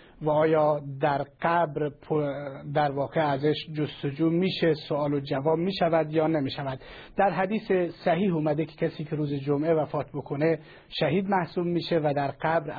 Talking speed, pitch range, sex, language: 150 wpm, 150-180 Hz, male, Persian